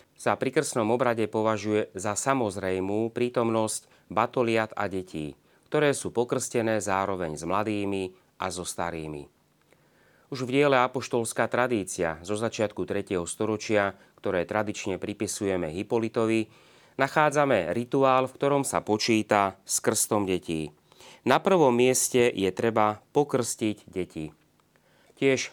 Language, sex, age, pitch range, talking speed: Slovak, male, 30-49, 95-120 Hz, 120 wpm